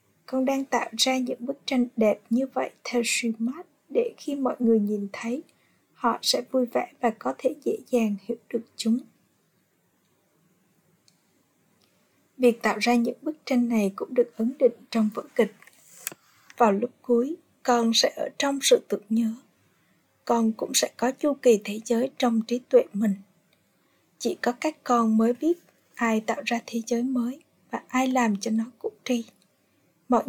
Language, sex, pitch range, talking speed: Vietnamese, female, 220-260 Hz, 170 wpm